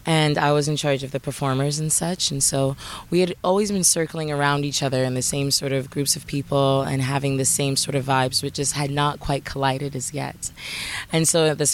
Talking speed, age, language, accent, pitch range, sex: 240 wpm, 20-39, English, American, 140-150 Hz, female